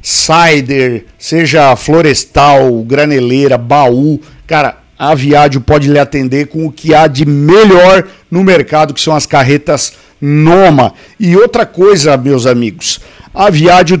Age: 50-69